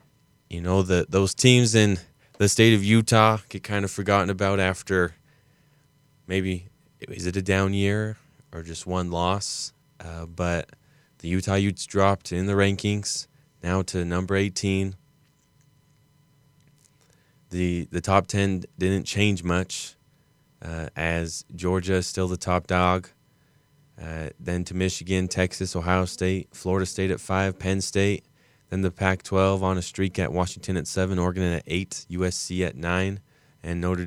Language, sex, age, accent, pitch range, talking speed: English, male, 20-39, American, 90-110 Hz, 150 wpm